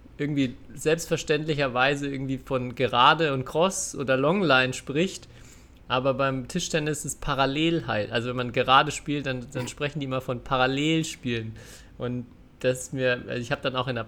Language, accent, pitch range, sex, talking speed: German, German, 125-145 Hz, male, 165 wpm